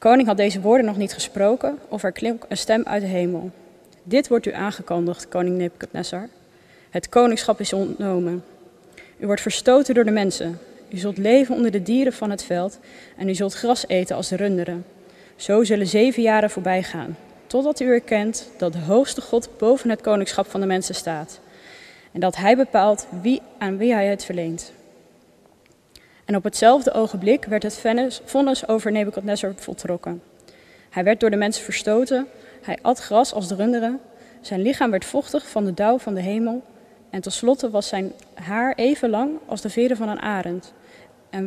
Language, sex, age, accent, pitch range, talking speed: Dutch, female, 20-39, Dutch, 190-240 Hz, 180 wpm